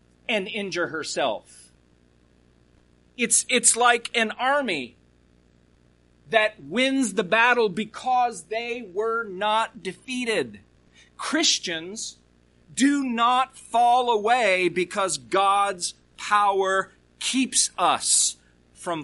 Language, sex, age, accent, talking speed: English, male, 40-59, American, 90 wpm